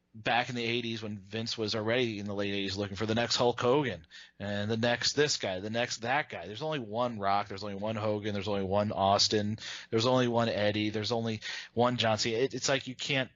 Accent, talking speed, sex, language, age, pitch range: American, 235 wpm, male, English, 30-49, 105-130 Hz